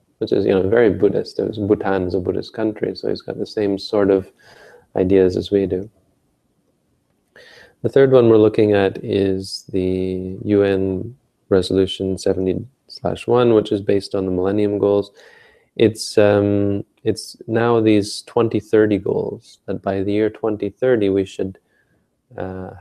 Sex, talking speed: male, 140 wpm